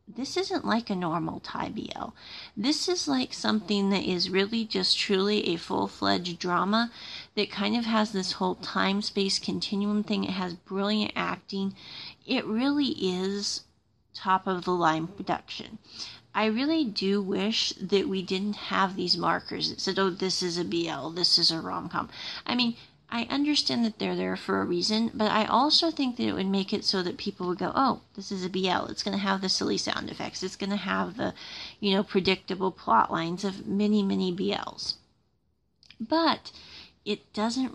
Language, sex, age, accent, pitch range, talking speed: English, female, 30-49, American, 185-220 Hz, 185 wpm